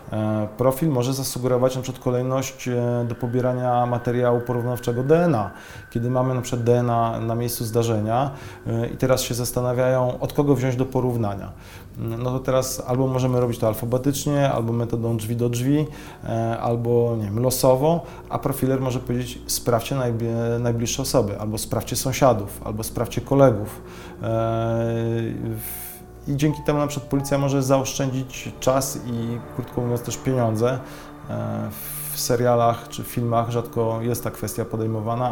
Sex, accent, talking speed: male, native, 135 wpm